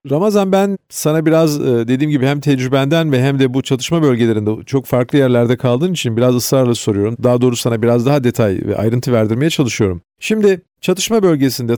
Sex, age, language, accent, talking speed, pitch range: male, 40-59, Turkish, native, 180 wpm, 125-175 Hz